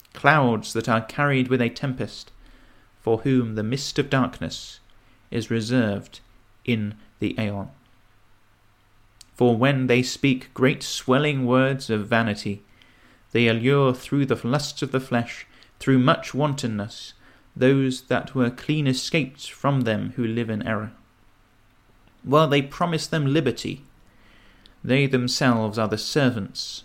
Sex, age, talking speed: male, 30-49, 130 wpm